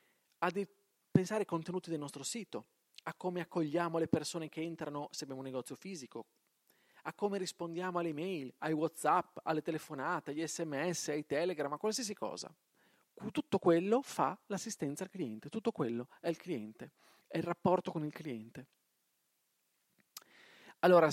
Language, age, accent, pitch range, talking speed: Italian, 40-59, native, 145-190 Hz, 150 wpm